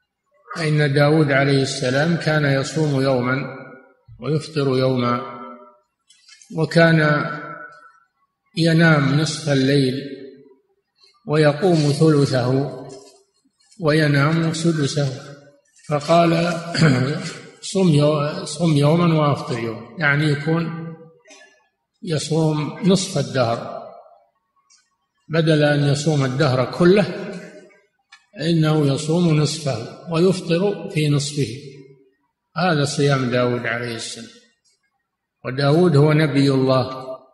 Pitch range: 135-165 Hz